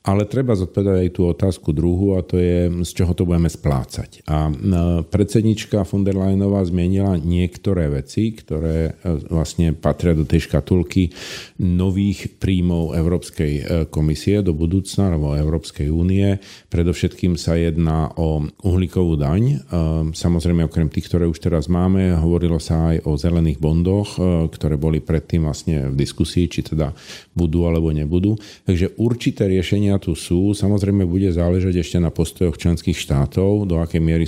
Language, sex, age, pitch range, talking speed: Slovak, male, 50-69, 80-95 Hz, 145 wpm